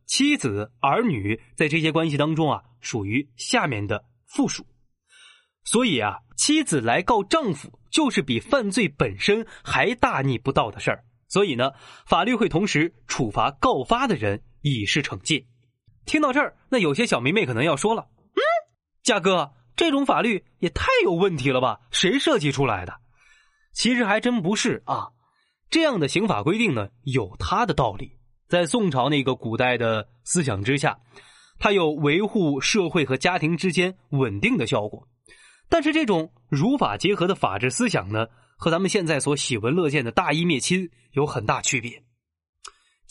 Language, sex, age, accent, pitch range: Chinese, male, 20-39, native, 125-200 Hz